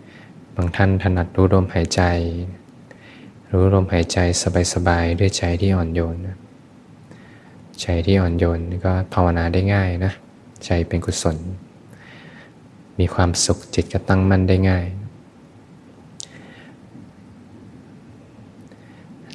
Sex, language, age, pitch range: male, Thai, 20-39, 85-100 Hz